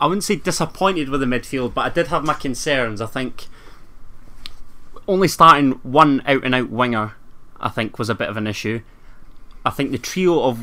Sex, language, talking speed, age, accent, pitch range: male, English, 185 wpm, 20-39, British, 110-130 Hz